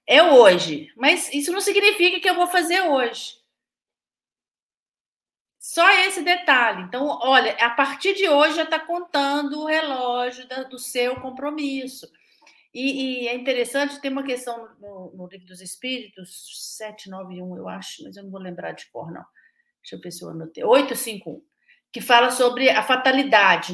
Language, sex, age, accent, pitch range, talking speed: Portuguese, female, 40-59, Brazilian, 220-295 Hz, 160 wpm